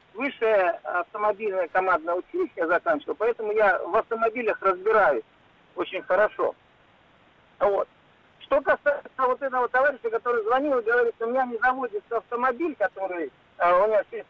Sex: male